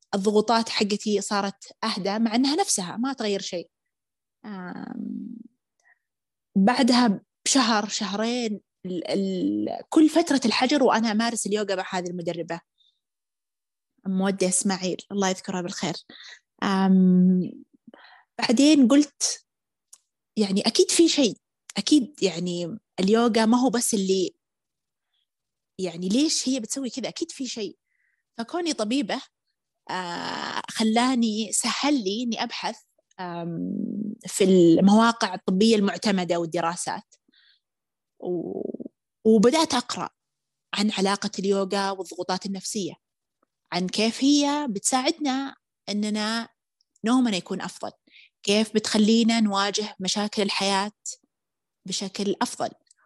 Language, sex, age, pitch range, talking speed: Arabic, female, 20-39, 195-255 Hz, 95 wpm